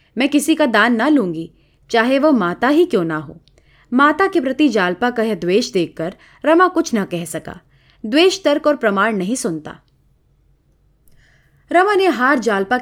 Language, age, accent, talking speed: Hindi, 30-49, native, 170 wpm